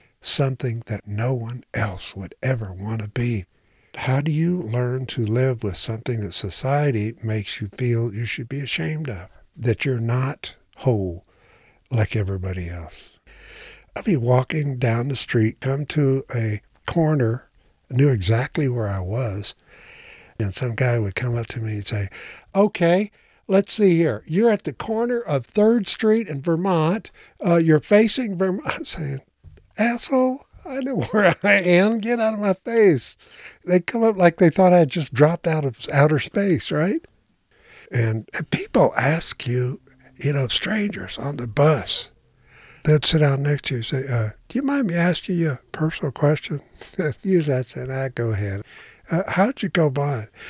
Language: English